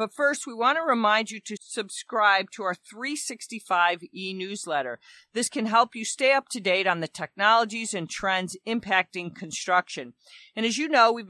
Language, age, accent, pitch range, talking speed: English, 40-59, American, 185-240 Hz, 175 wpm